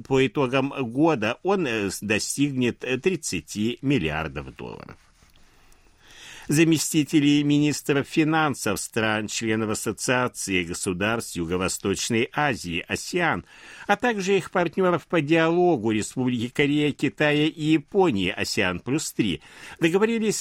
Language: Russian